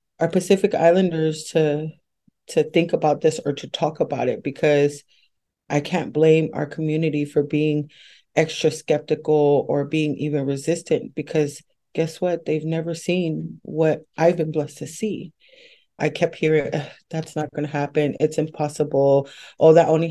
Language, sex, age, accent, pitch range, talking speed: English, female, 30-49, American, 145-165 Hz, 155 wpm